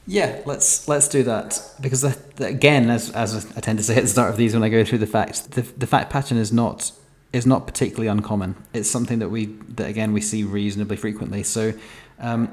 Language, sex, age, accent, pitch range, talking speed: English, male, 30-49, British, 105-120 Hz, 220 wpm